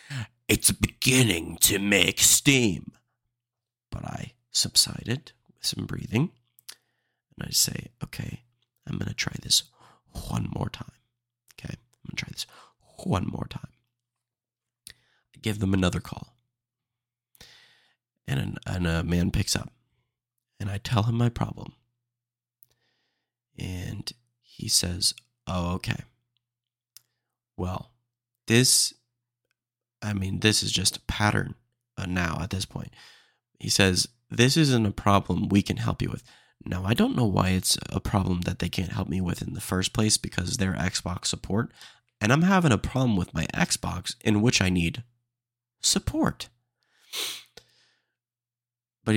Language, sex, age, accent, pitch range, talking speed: English, male, 30-49, American, 100-120 Hz, 140 wpm